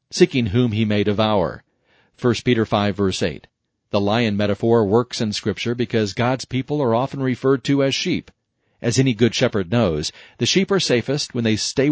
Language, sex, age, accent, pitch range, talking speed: English, male, 40-59, American, 105-130 Hz, 185 wpm